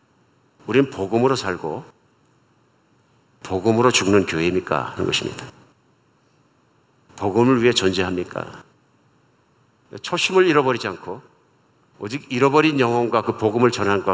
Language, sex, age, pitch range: Korean, male, 50-69, 105-130 Hz